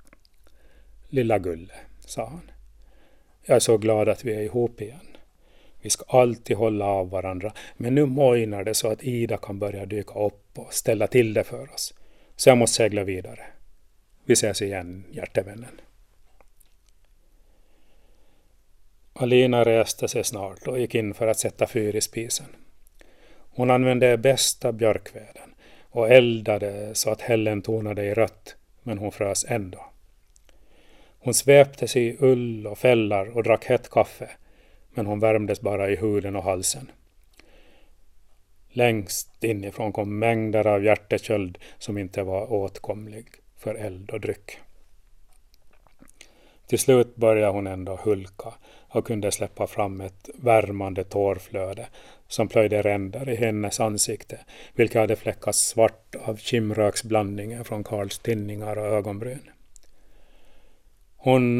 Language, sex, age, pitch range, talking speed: Swedish, male, 40-59, 100-115 Hz, 135 wpm